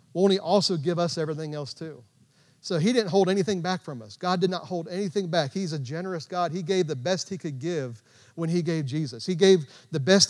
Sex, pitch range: male, 150-185 Hz